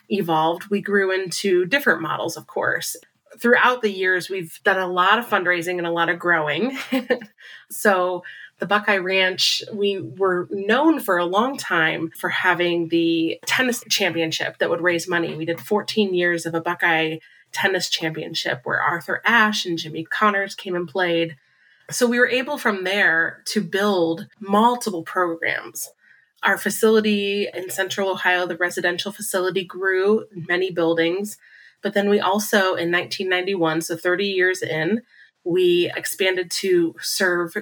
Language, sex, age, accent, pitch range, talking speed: English, female, 30-49, American, 170-205 Hz, 150 wpm